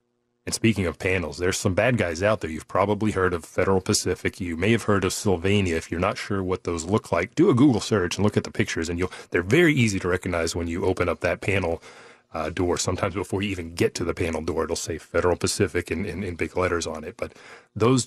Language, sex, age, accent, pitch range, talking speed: English, male, 30-49, American, 85-110 Hz, 255 wpm